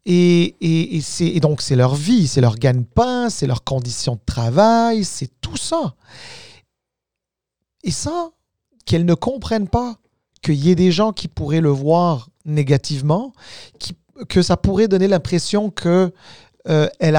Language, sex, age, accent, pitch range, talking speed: French, male, 40-59, French, 140-180 Hz, 150 wpm